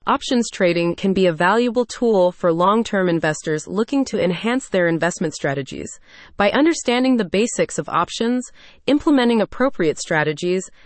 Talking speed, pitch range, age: 140 wpm, 170-230 Hz, 30-49